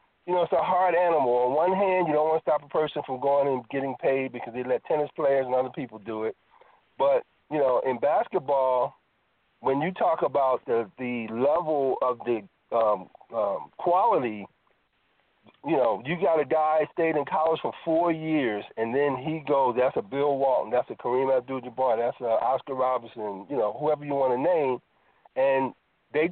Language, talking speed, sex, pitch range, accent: English, 195 wpm, male, 130-165 Hz, American